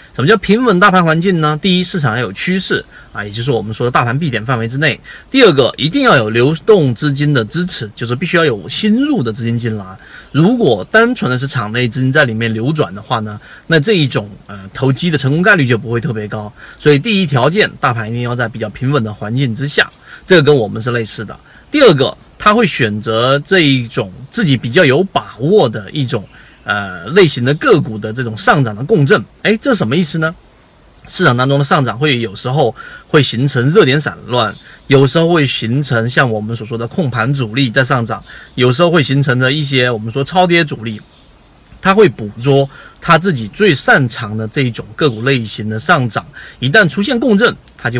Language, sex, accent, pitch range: Chinese, male, native, 115-160 Hz